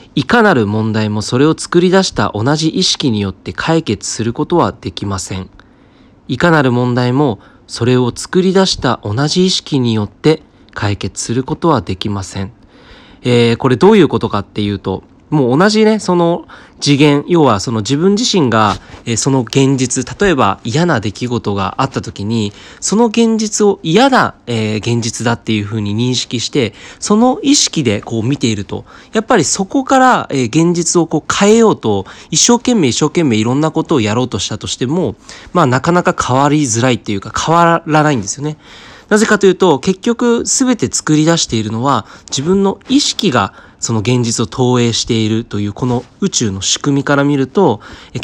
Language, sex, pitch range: Japanese, male, 115-175 Hz